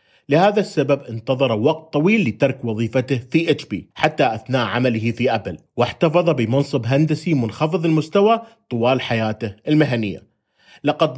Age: 40-59